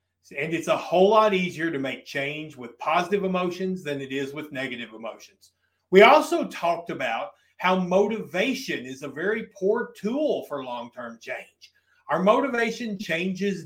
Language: English